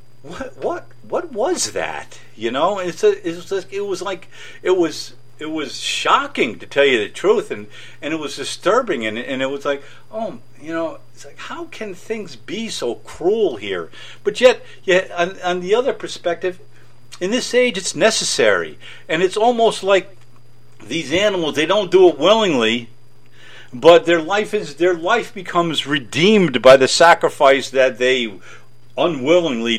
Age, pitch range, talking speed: 50-69, 120-180 Hz, 165 wpm